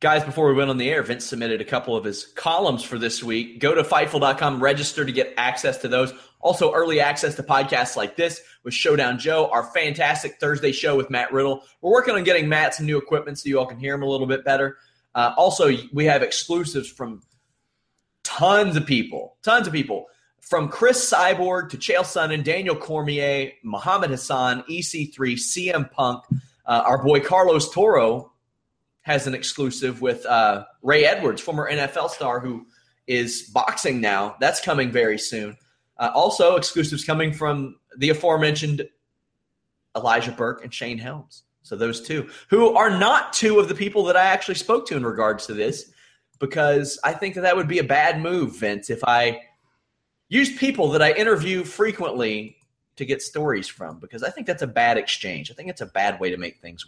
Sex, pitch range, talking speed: male, 125-165 Hz, 190 wpm